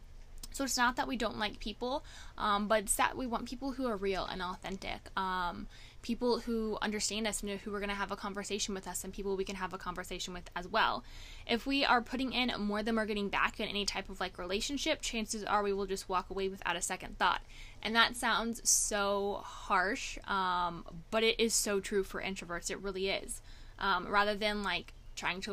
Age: 10-29